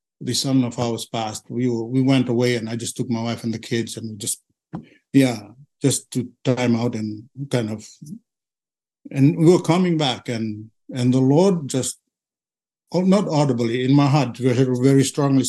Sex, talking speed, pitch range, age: male, 190 wpm, 120-145 Hz, 60-79